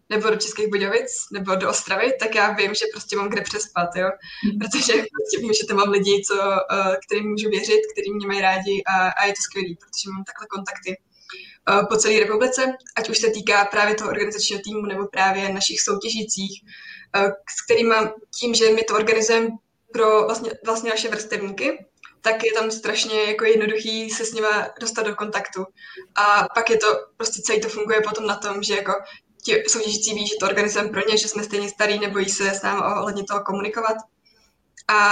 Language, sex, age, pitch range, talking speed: Czech, female, 20-39, 200-220 Hz, 190 wpm